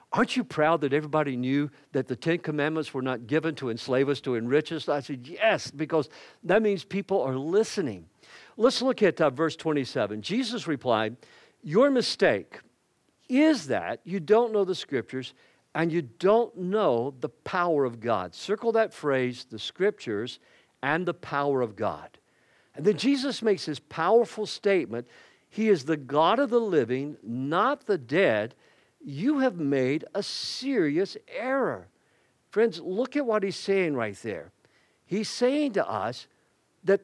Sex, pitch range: male, 140-220 Hz